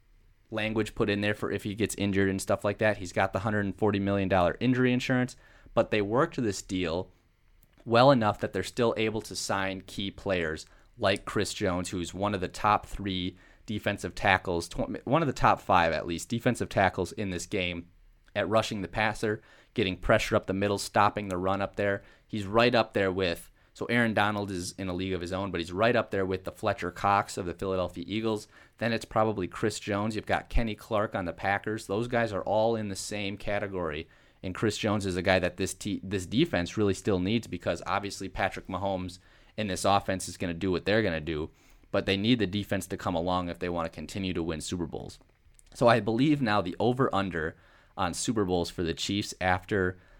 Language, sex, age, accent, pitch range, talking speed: English, male, 30-49, American, 90-110 Hz, 215 wpm